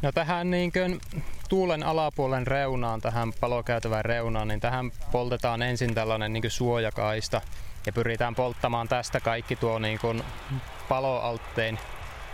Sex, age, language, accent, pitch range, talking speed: male, 20-39, Finnish, native, 115-130 Hz, 115 wpm